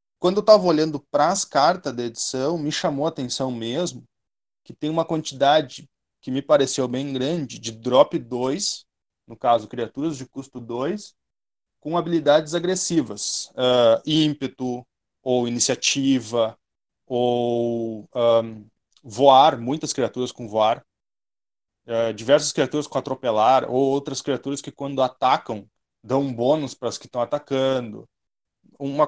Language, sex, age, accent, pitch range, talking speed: Portuguese, male, 20-39, Brazilian, 120-150 Hz, 130 wpm